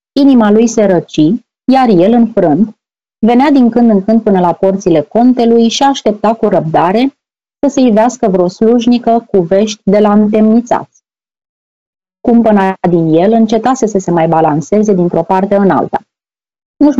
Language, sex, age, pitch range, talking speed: Romanian, female, 30-49, 190-235 Hz, 155 wpm